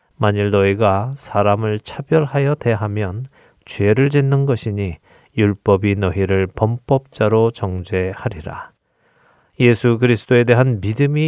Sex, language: male, Korean